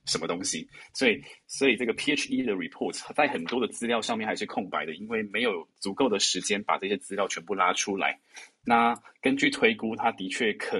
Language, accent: Chinese, native